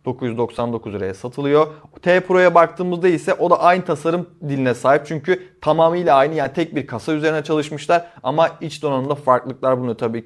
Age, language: 30-49, Turkish